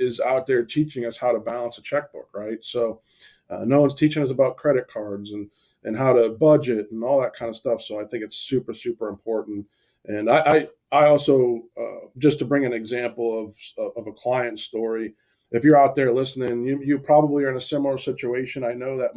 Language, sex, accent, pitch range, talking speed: English, male, American, 115-140 Hz, 220 wpm